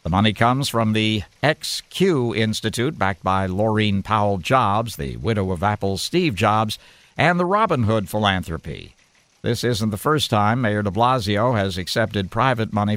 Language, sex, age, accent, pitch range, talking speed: English, male, 60-79, American, 100-125 Hz, 160 wpm